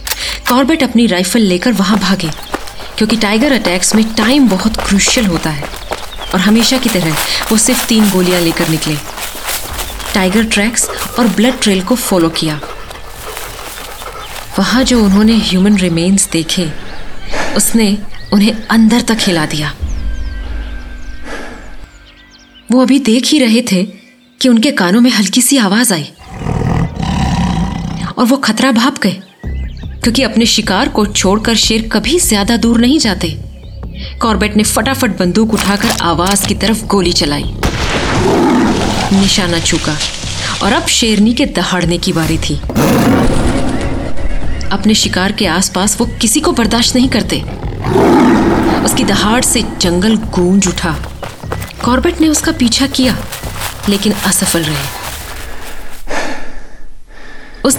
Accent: native